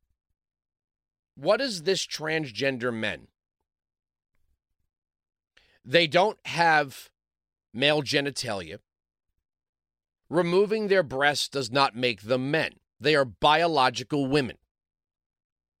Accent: American